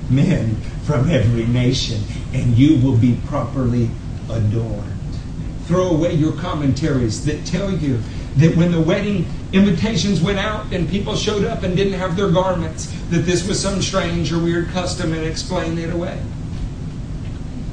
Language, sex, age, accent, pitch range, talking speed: English, male, 60-79, American, 110-150 Hz, 150 wpm